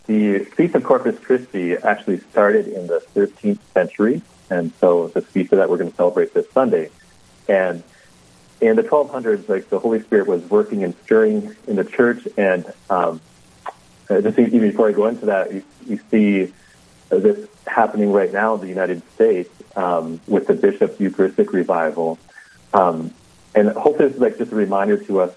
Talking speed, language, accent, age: 175 wpm, English, American, 40-59